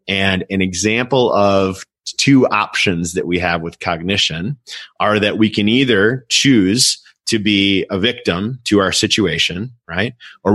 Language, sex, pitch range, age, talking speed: English, male, 90-110 Hz, 30-49, 150 wpm